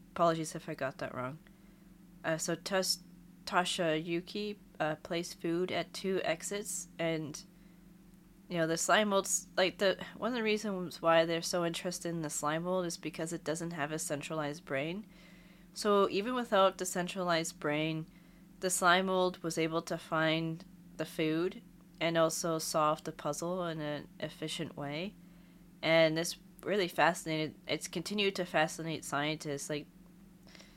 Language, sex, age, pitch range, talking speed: English, female, 20-39, 160-185 Hz, 155 wpm